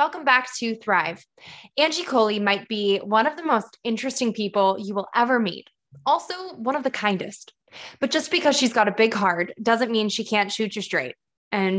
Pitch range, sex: 205-255 Hz, female